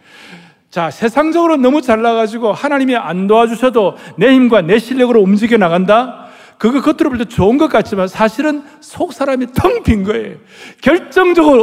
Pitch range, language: 195-270 Hz, Korean